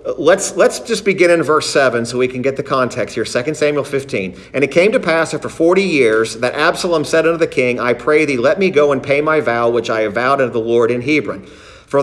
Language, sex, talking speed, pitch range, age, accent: English, male, 255 wpm, 125-170 Hz, 50-69, American